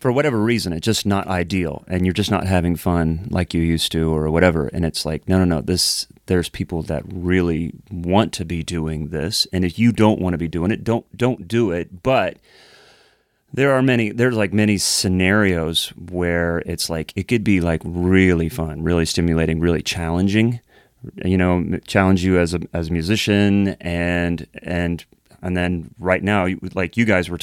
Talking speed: 195 wpm